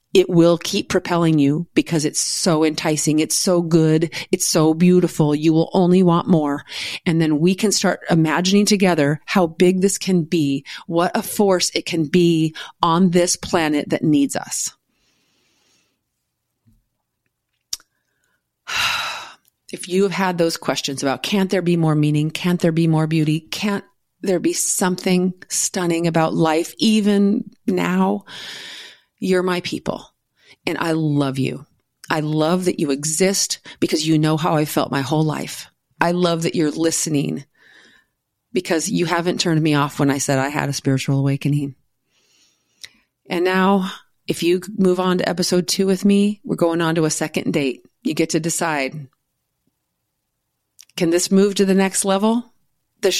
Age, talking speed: 40-59, 160 wpm